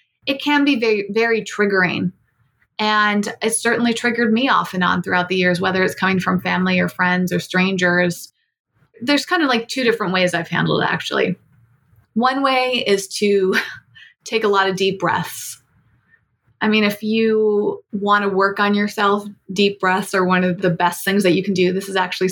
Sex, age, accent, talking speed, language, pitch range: female, 20-39, American, 190 wpm, English, 180-205 Hz